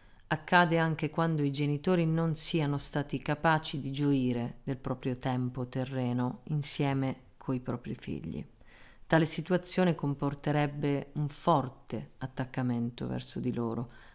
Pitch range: 125-165 Hz